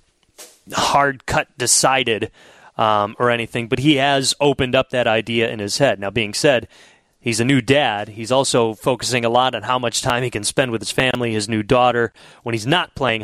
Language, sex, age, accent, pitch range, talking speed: English, male, 30-49, American, 115-140 Hz, 200 wpm